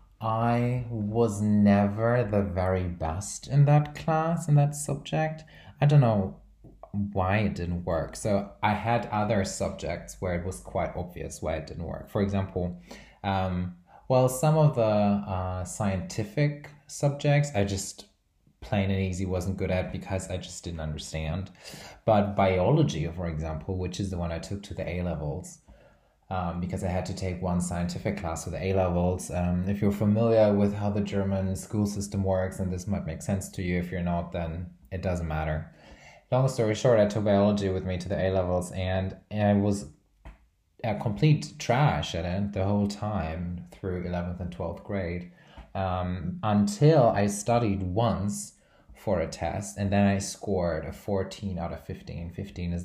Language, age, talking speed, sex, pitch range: English, 20-39, 170 wpm, male, 90-105 Hz